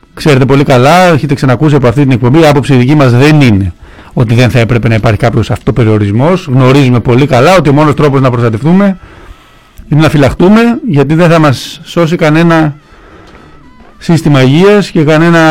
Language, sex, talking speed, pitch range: Greek, male, 170 wpm, 125-160 Hz